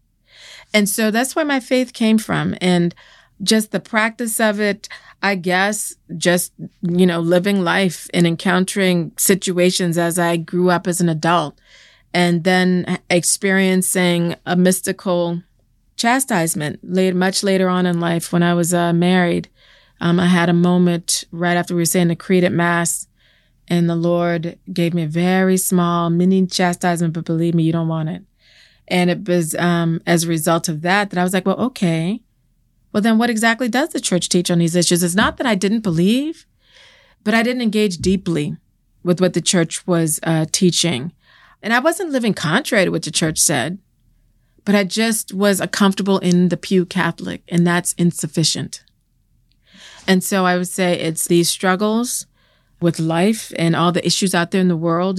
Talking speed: 180 wpm